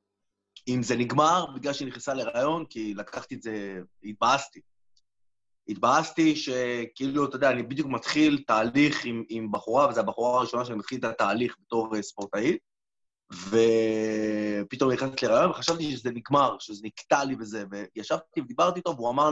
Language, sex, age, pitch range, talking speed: Hebrew, male, 30-49, 115-160 Hz, 145 wpm